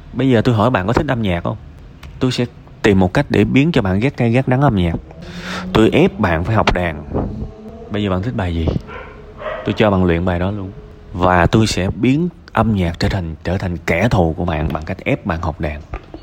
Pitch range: 85-120 Hz